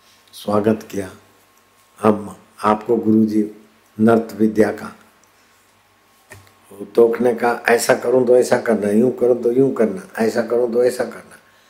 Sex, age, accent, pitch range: male, 60-79, native, 110-120 Hz